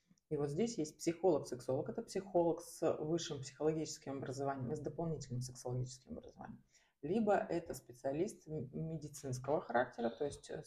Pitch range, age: 140-180 Hz, 30-49